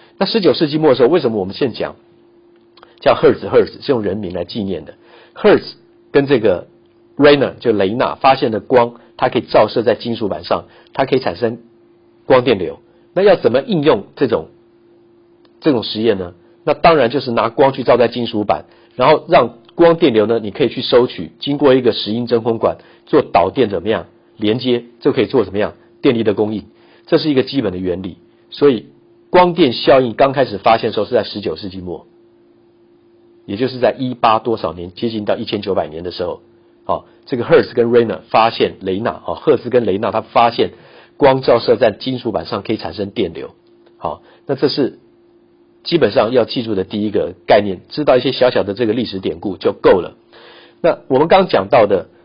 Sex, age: male, 50-69